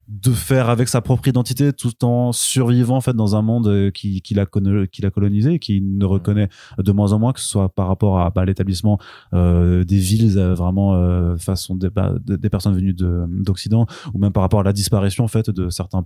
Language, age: French, 20-39